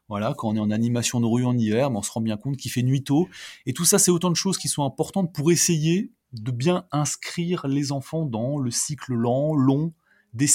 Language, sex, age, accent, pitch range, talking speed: French, male, 30-49, French, 125-160 Hz, 245 wpm